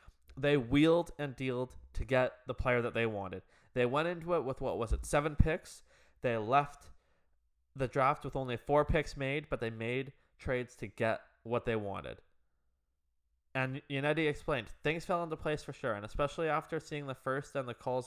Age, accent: 20-39, American